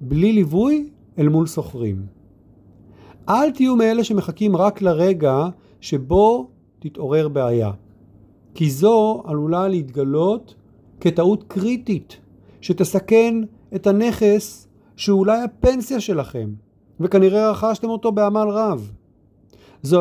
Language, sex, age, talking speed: Hebrew, male, 50-69, 100 wpm